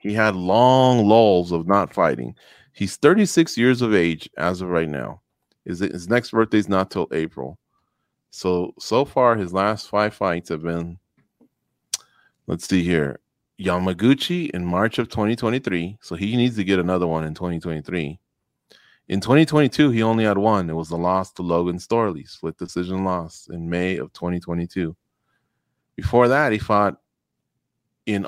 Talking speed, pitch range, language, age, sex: 155 wpm, 90-120 Hz, English, 30-49, male